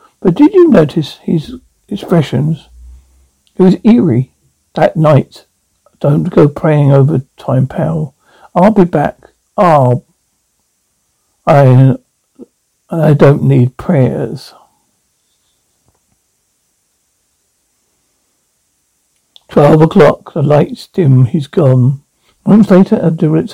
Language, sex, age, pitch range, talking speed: English, male, 60-79, 130-180 Hz, 100 wpm